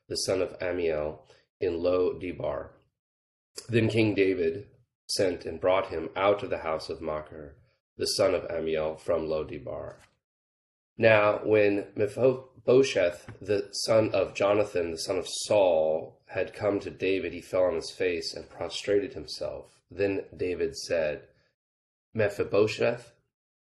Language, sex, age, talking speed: English, male, 30-49, 130 wpm